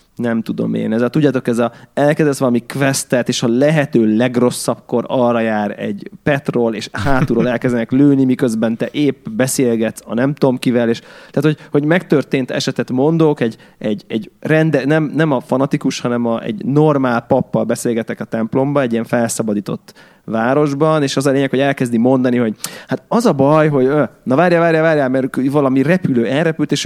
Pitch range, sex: 120-150 Hz, male